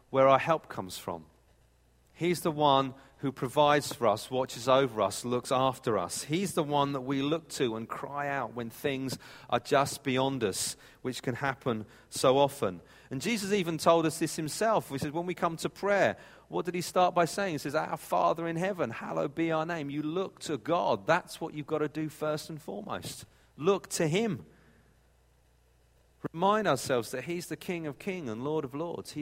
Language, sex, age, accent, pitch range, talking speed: English, male, 40-59, British, 135-175 Hz, 200 wpm